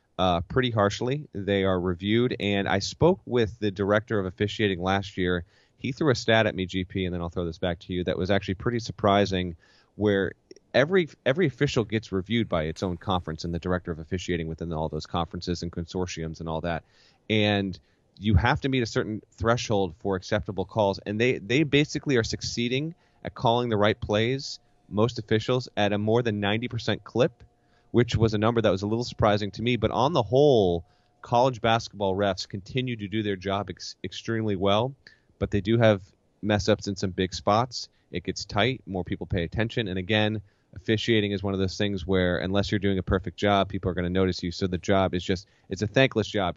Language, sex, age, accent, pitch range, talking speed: English, male, 30-49, American, 95-115 Hz, 210 wpm